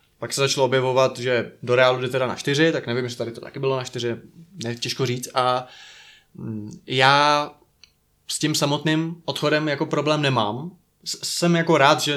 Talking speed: 180 wpm